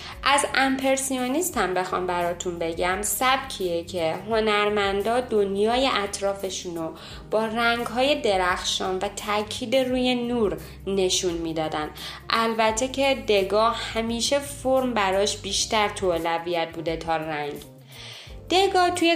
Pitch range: 180-240 Hz